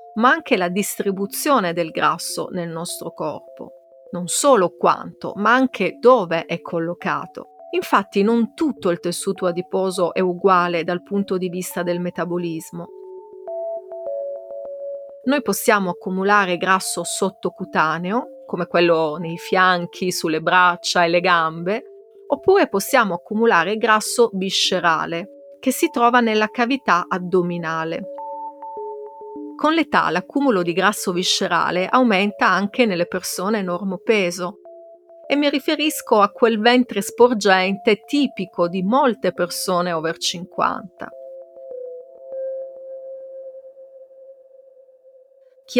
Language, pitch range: Italian, 175-265 Hz